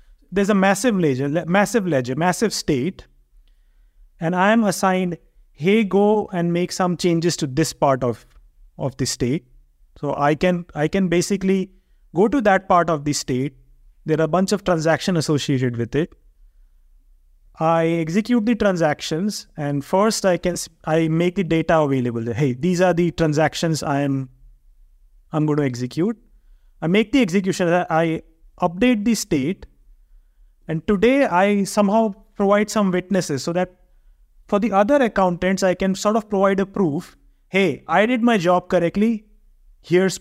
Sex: male